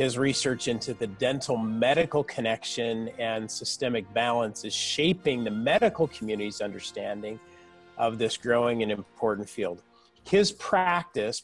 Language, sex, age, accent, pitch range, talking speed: English, male, 40-59, American, 110-135 Hz, 125 wpm